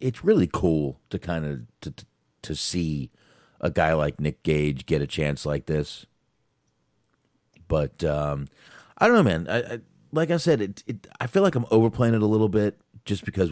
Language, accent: English, American